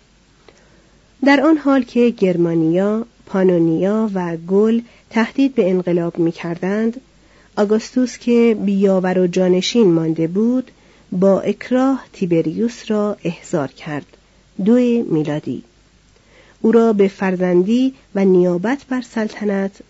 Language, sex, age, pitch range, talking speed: Persian, female, 40-59, 175-235 Hz, 105 wpm